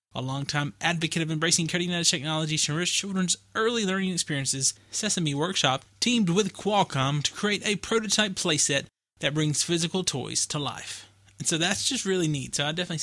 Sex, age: male, 20-39